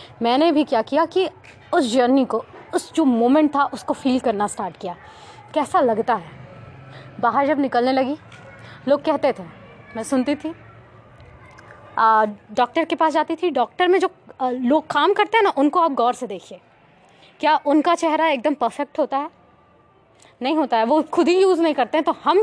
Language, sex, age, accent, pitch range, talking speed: Hindi, female, 20-39, native, 230-320 Hz, 175 wpm